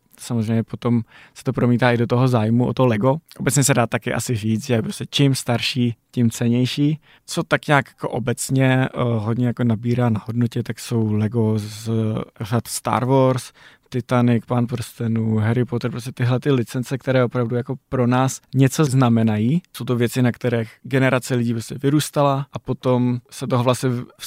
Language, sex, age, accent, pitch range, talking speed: Czech, male, 20-39, native, 115-130 Hz, 180 wpm